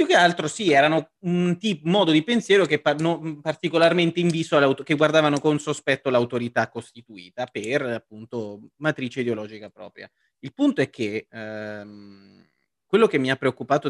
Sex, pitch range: male, 115-150 Hz